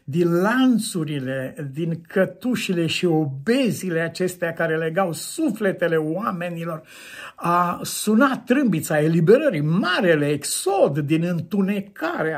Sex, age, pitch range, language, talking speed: male, 50-69, 145-190 Hz, Romanian, 90 wpm